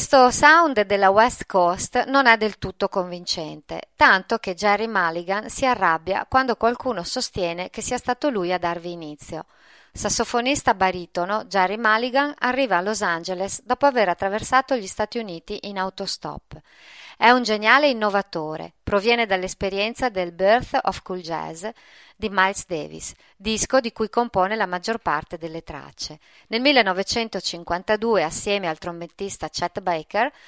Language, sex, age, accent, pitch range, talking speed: Italian, female, 40-59, native, 175-230 Hz, 140 wpm